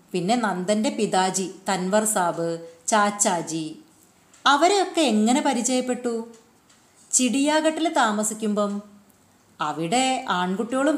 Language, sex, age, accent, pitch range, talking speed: Malayalam, female, 30-49, native, 185-260 Hz, 70 wpm